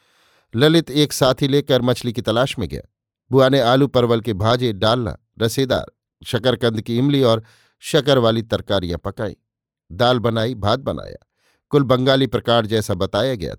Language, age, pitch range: Hindi, 50-69, 110-130 Hz